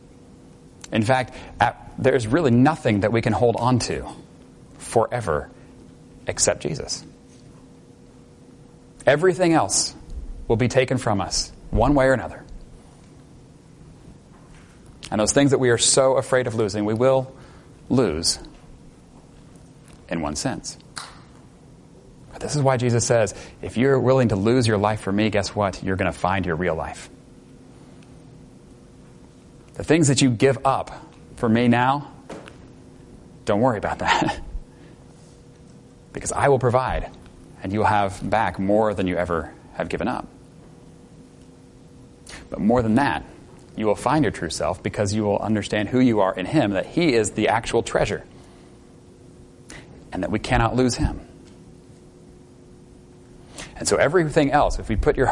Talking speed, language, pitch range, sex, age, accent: 145 wpm, English, 105-130 Hz, male, 30-49, American